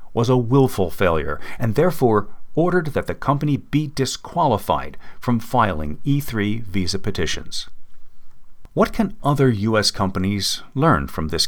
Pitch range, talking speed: 95-135 Hz, 130 wpm